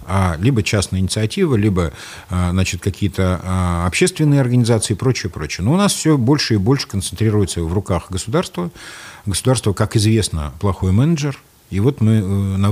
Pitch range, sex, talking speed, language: 95-125 Hz, male, 145 wpm, Russian